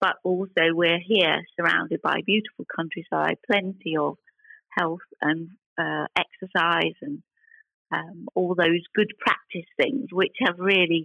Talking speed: 130 wpm